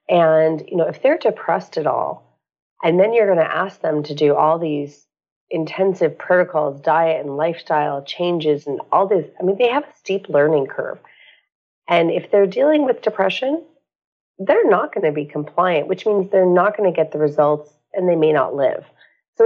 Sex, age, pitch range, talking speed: female, 40-59, 150-190 Hz, 195 wpm